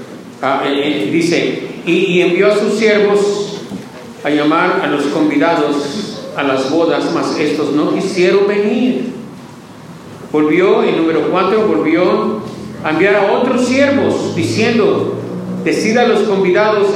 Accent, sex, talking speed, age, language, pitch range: Mexican, male, 120 wpm, 50-69, Spanish, 165-235 Hz